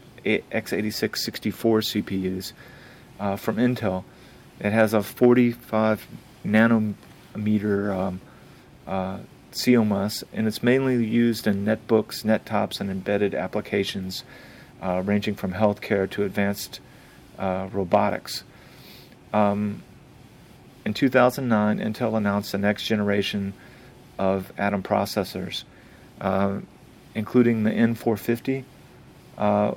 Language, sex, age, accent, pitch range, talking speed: English, male, 40-59, American, 100-115 Hz, 95 wpm